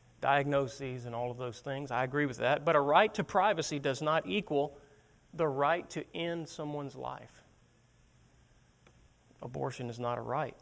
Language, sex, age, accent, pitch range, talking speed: English, male, 40-59, American, 125-155 Hz, 165 wpm